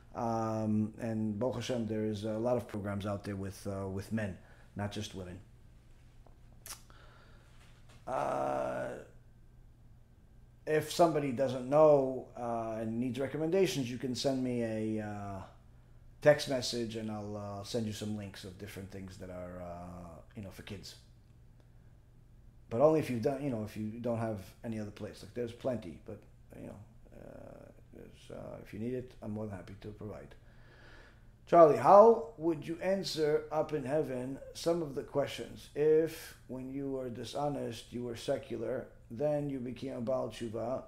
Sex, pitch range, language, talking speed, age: male, 110-140 Hz, English, 155 wpm, 40-59